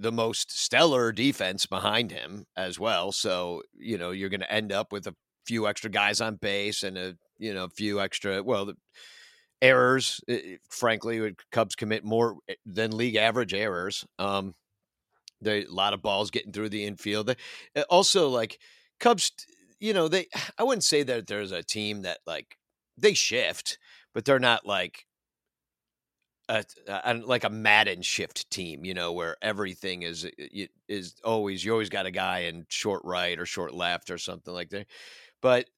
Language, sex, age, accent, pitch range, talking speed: English, male, 50-69, American, 95-125 Hz, 175 wpm